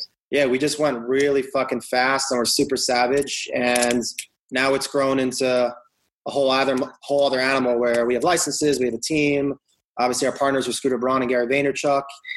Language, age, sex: English, 30-49, male